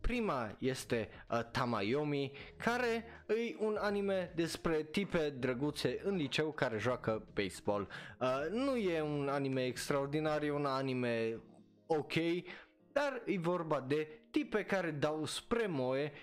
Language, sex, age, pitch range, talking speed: Romanian, male, 20-39, 125-200 Hz, 120 wpm